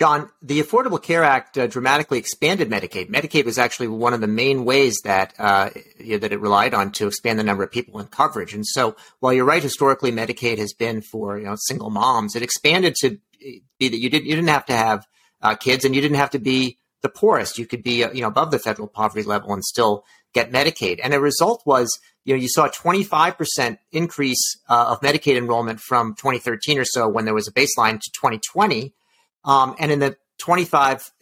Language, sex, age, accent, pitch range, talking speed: English, male, 40-59, American, 115-145 Hz, 225 wpm